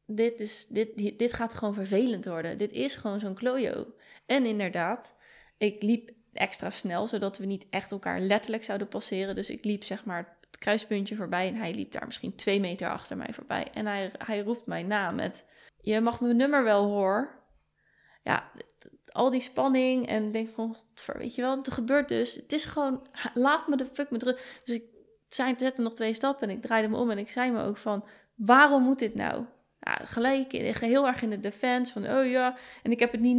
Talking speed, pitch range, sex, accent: 215 wpm, 210-270 Hz, female, Dutch